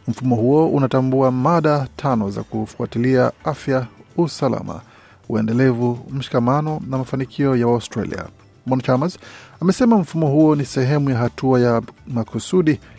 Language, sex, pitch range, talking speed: Swahili, male, 120-140 Hz, 115 wpm